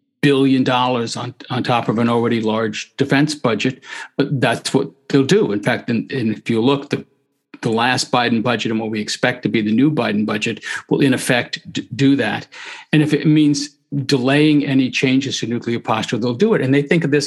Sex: male